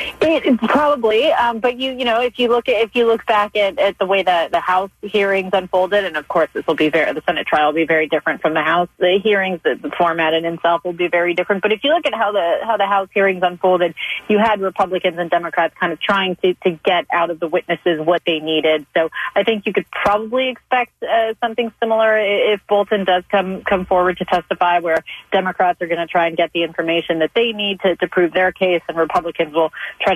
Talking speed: 245 wpm